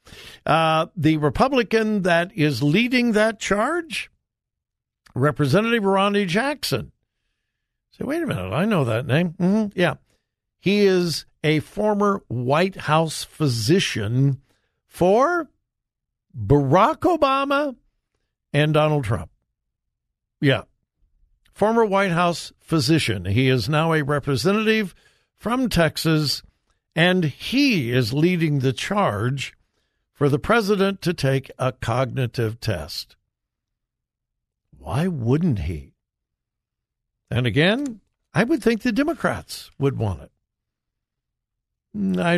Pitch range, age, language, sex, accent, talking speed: 125-200 Hz, 60-79, English, male, American, 105 wpm